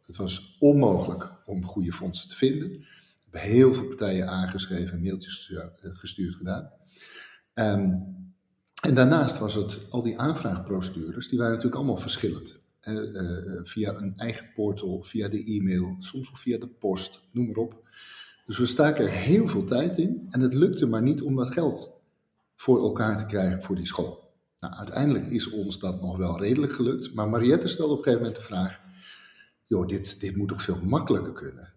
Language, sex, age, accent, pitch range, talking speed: Dutch, male, 50-69, Dutch, 95-120 Hz, 180 wpm